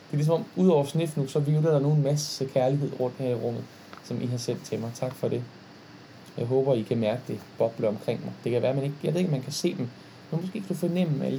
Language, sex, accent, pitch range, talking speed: Danish, male, native, 130-170 Hz, 295 wpm